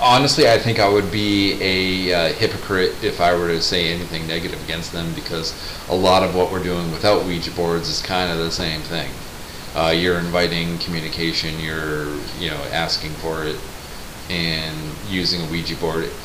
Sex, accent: male, American